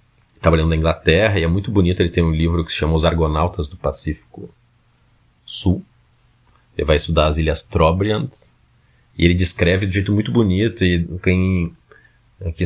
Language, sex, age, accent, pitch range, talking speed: Portuguese, male, 30-49, Brazilian, 80-100 Hz, 175 wpm